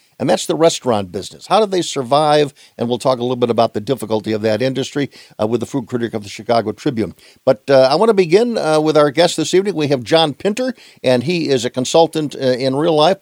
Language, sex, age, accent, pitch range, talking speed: English, male, 50-69, American, 125-160 Hz, 245 wpm